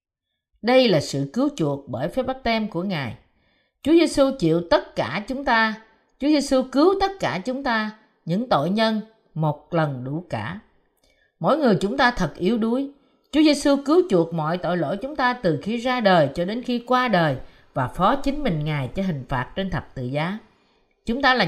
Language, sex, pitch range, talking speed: Vietnamese, female, 165-255 Hz, 200 wpm